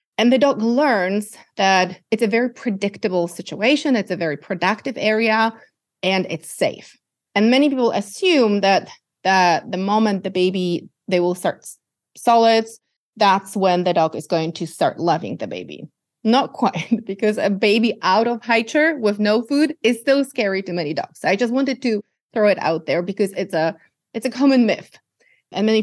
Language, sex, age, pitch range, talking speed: English, female, 30-49, 185-235 Hz, 180 wpm